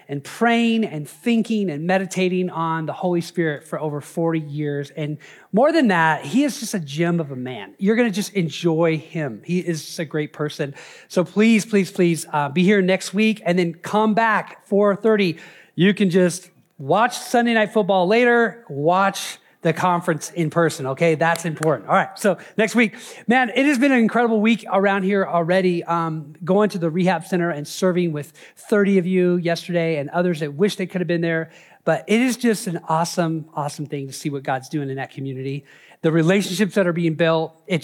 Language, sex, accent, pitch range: English, male, American, 160-210 Hz